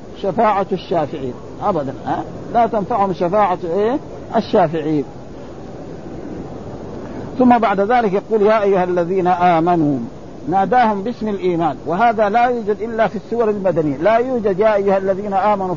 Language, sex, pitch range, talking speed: Arabic, male, 170-210 Hz, 125 wpm